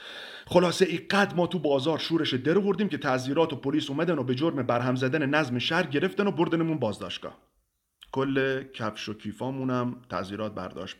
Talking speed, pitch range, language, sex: 160 wpm, 120-175 Hz, Persian, male